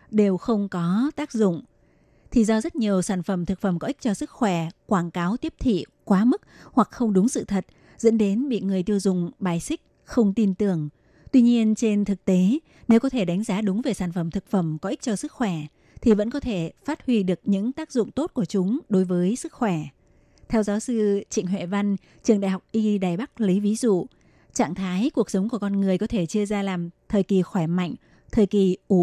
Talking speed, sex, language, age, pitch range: 230 wpm, female, Vietnamese, 20-39, 185-225 Hz